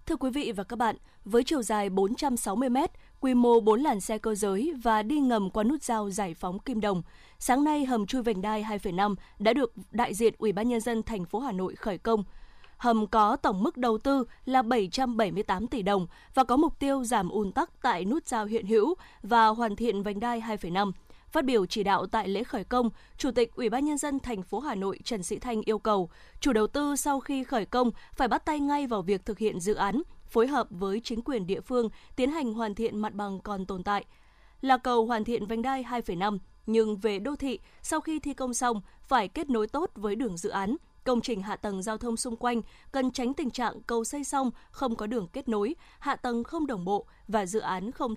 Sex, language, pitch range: female, Vietnamese, 210-260 Hz